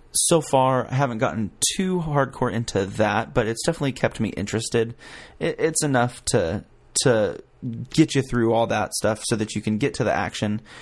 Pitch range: 105-125 Hz